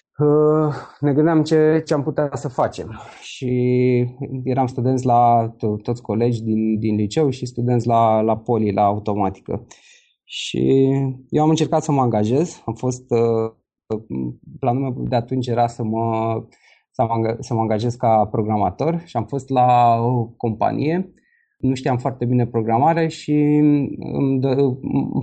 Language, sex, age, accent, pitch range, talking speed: Romanian, male, 20-39, native, 115-140 Hz, 140 wpm